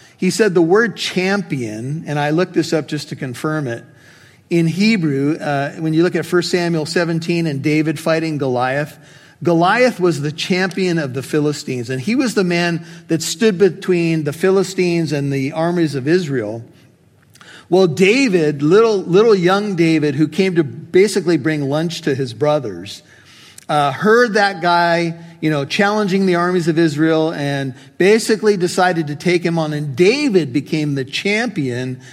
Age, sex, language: 50-69, male, English